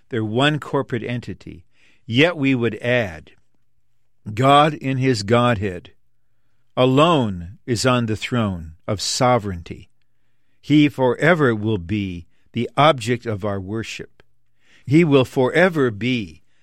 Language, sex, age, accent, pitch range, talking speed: English, male, 50-69, American, 110-140 Hz, 115 wpm